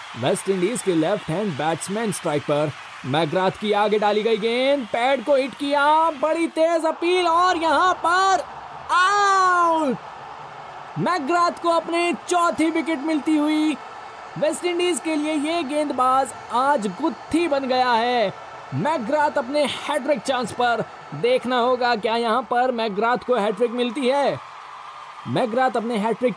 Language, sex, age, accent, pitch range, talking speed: Hindi, male, 20-39, native, 210-300 Hz, 135 wpm